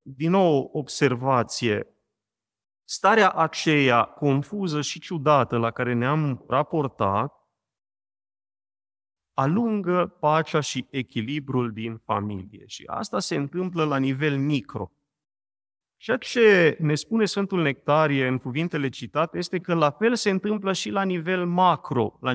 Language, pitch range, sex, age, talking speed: Romanian, 115-170 Hz, male, 30-49, 120 wpm